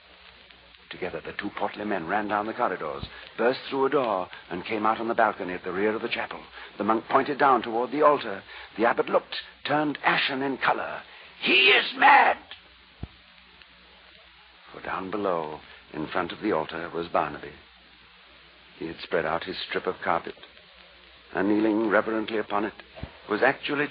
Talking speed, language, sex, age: 170 wpm, English, male, 60-79